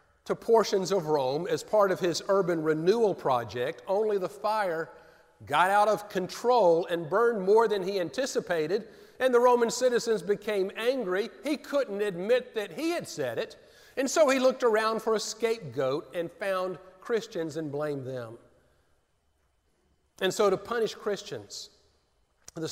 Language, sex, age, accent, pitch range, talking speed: English, male, 50-69, American, 130-205 Hz, 155 wpm